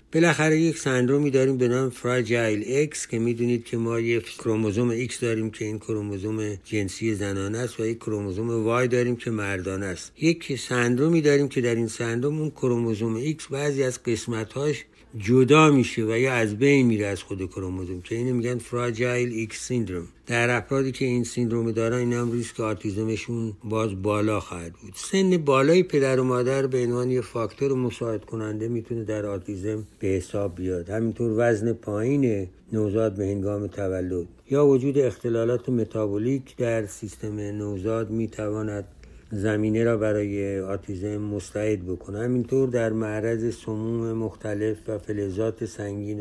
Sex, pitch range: male, 105-120 Hz